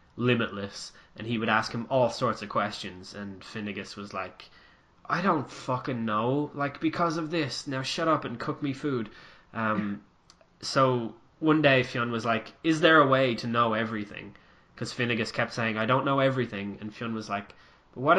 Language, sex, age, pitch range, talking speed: English, male, 10-29, 110-135 Hz, 185 wpm